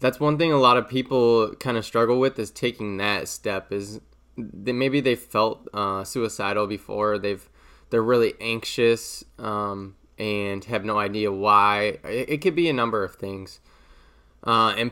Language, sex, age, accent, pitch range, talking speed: English, male, 20-39, American, 105-120 Hz, 175 wpm